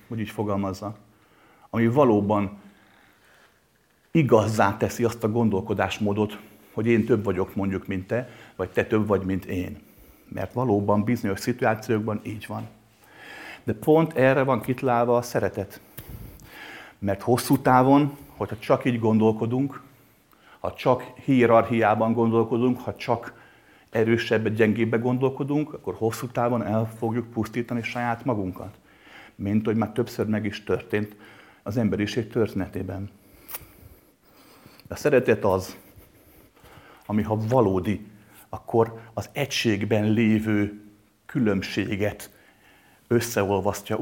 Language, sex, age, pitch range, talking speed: Hungarian, male, 50-69, 100-120 Hz, 115 wpm